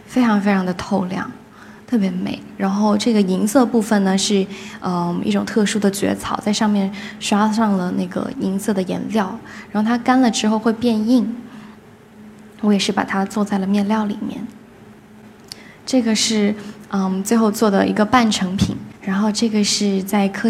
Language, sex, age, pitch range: Chinese, female, 10-29, 195-225 Hz